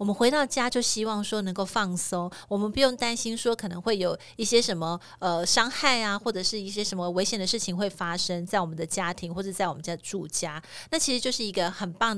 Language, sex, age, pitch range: Chinese, female, 30-49, 180-225 Hz